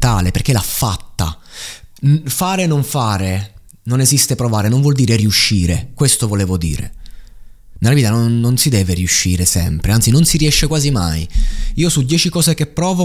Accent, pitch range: native, 105-145 Hz